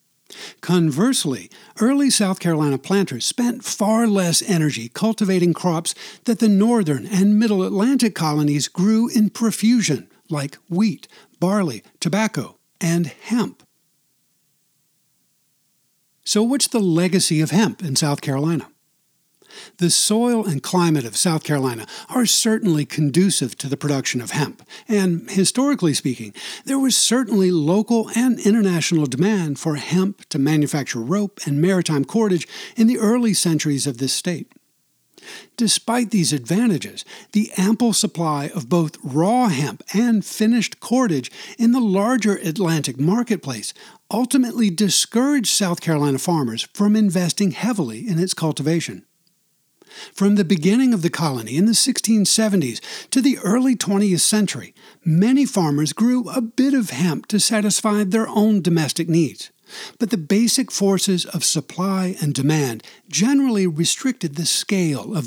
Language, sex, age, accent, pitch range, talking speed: English, male, 60-79, American, 155-220 Hz, 135 wpm